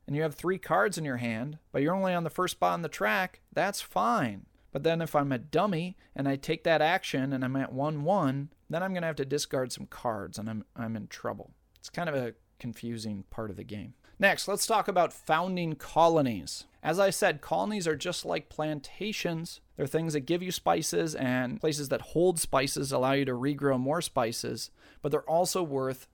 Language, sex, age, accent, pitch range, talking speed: English, male, 30-49, American, 125-165 Hz, 215 wpm